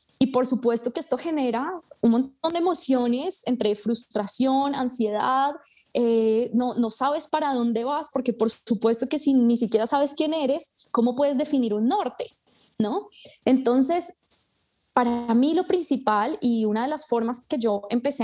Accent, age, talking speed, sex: Colombian, 20-39, 160 wpm, female